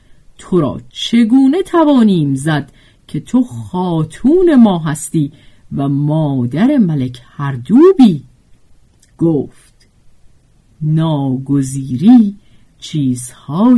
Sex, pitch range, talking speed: female, 145-240 Hz, 80 wpm